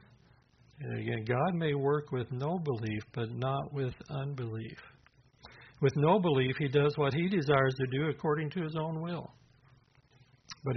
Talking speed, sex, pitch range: 150 wpm, male, 120-145 Hz